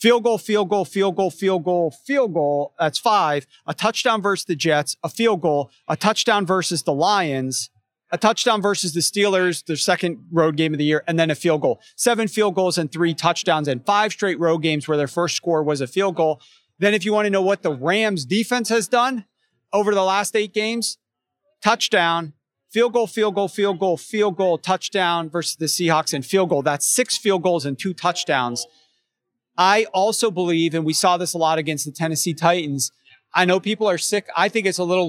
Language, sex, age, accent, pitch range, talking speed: English, male, 40-59, American, 155-200 Hz, 215 wpm